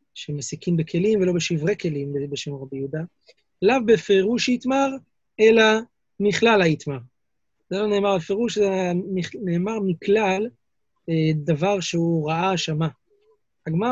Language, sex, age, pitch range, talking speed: Hebrew, male, 30-49, 165-215 Hz, 110 wpm